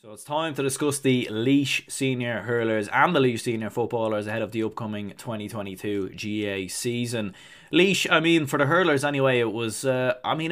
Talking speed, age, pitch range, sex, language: 190 wpm, 20-39, 110-130 Hz, male, English